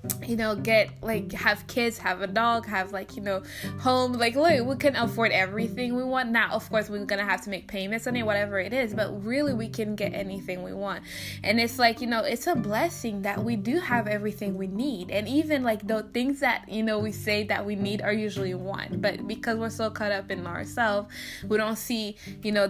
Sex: female